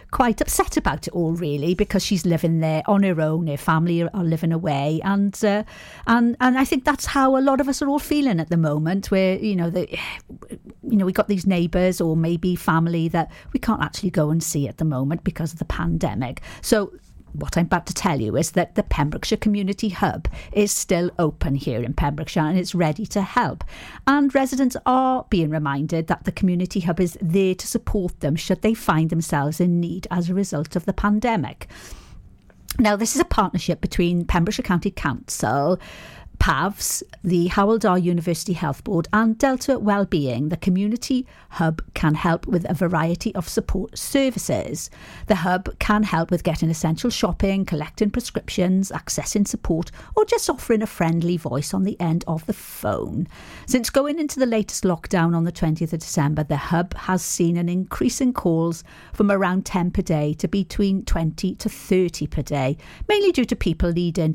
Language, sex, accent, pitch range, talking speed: English, female, British, 165-210 Hz, 190 wpm